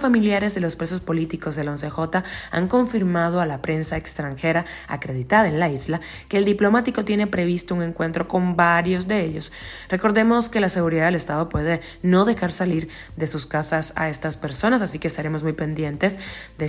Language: Spanish